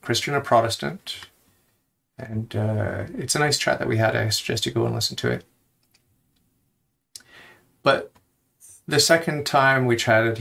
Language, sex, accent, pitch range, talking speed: English, male, American, 105-120 Hz, 150 wpm